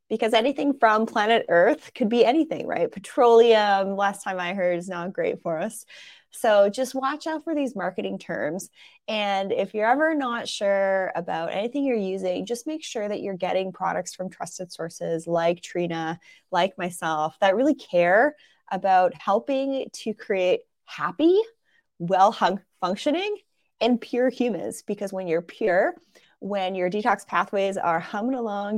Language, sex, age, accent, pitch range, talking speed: English, female, 20-39, American, 185-250 Hz, 155 wpm